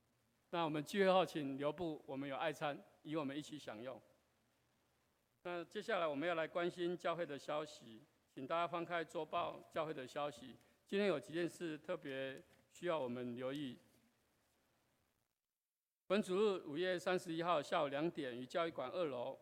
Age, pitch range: 50-69, 140-180 Hz